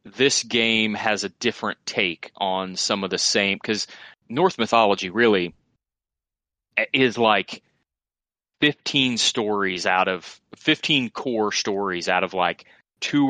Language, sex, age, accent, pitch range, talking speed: English, male, 30-49, American, 90-110 Hz, 125 wpm